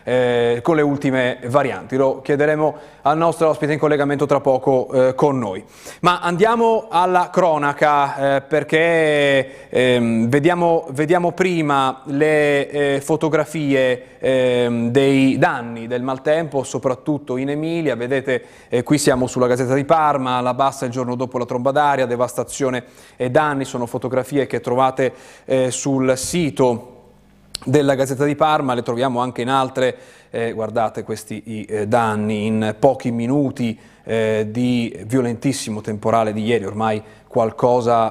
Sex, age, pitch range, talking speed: male, 30-49, 115-140 Hz, 140 wpm